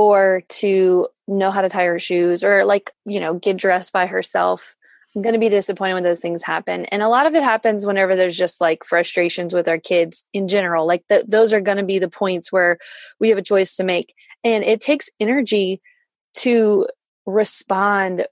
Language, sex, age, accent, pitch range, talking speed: English, female, 20-39, American, 185-215 Hz, 205 wpm